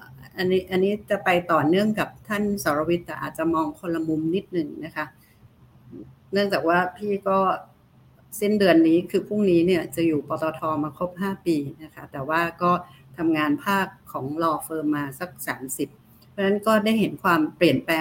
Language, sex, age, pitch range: Thai, female, 60-79, 155-190 Hz